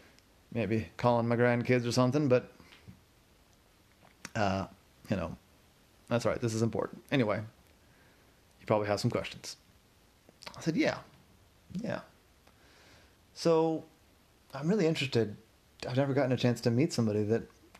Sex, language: male, English